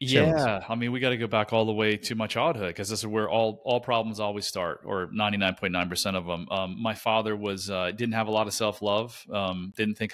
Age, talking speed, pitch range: 30-49, 270 wpm, 100-115 Hz